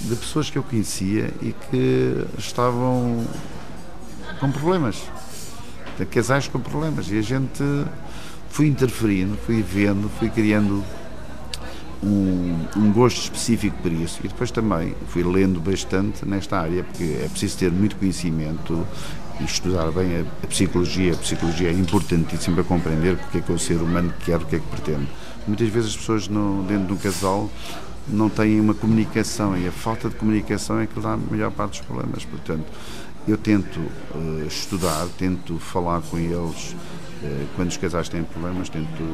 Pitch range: 85-110 Hz